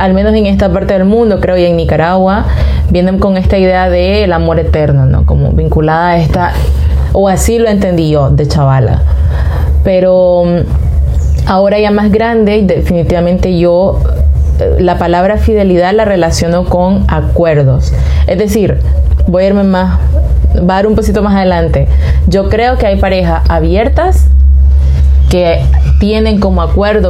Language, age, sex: Spanish, 20-39, female